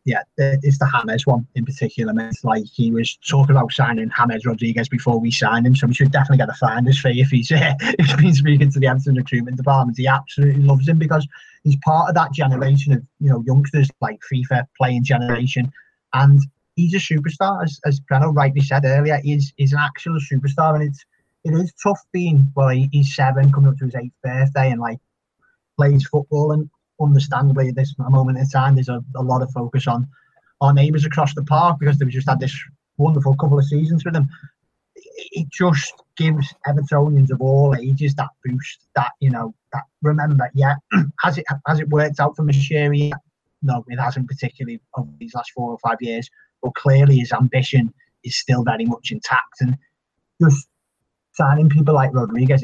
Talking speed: 195 wpm